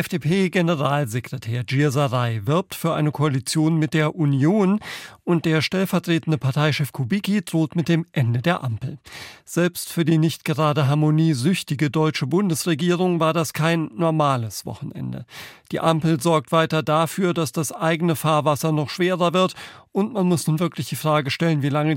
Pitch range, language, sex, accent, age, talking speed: 145-175 Hz, German, male, German, 40-59, 150 wpm